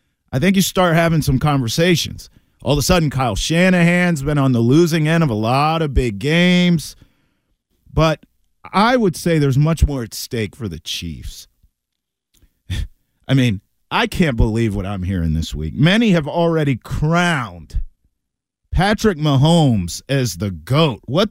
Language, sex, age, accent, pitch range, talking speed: English, male, 50-69, American, 130-220 Hz, 160 wpm